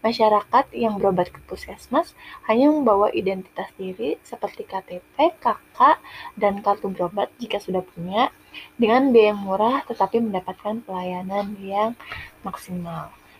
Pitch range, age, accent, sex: 195-235 Hz, 20-39, native, female